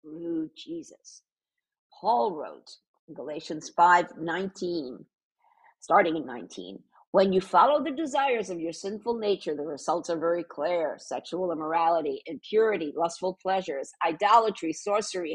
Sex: female